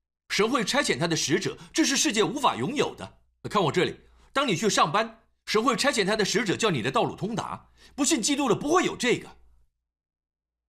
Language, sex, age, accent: Chinese, male, 50-69, native